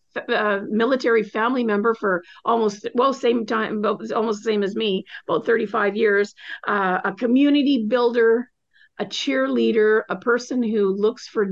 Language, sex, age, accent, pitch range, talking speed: English, female, 50-69, American, 205-265 Hz, 145 wpm